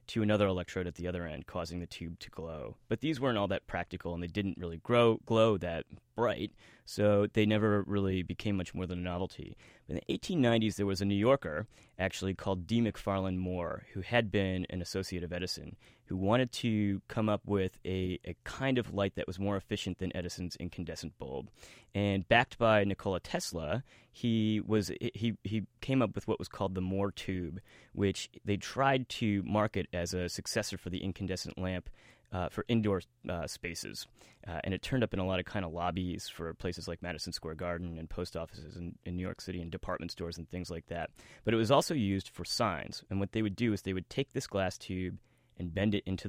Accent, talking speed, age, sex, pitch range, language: American, 215 wpm, 30-49, male, 90-105 Hz, English